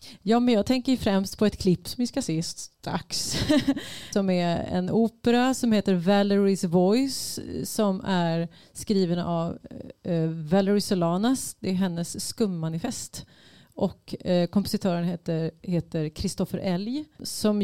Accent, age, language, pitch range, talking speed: native, 30-49, Swedish, 175-220 Hz, 125 wpm